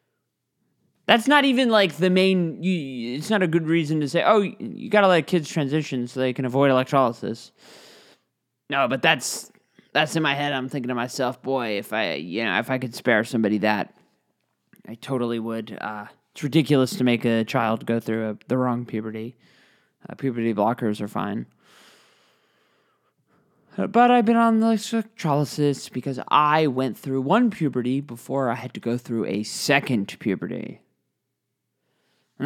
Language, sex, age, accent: English, male, 20-39, American